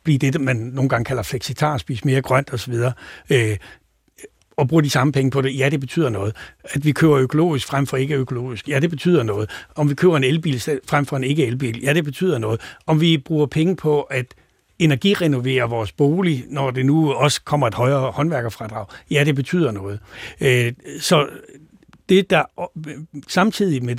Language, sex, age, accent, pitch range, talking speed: Danish, male, 60-79, native, 125-150 Hz, 190 wpm